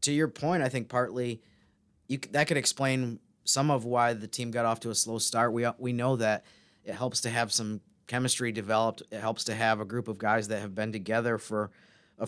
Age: 30-49